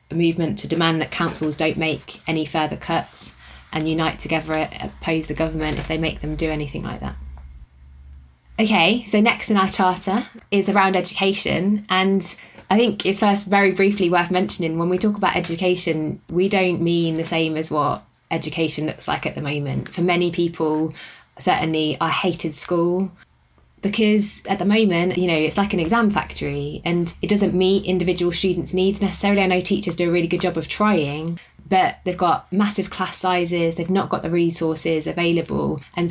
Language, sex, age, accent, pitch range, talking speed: English, female, 20-39, British, 160-185 Hz, 180 wpm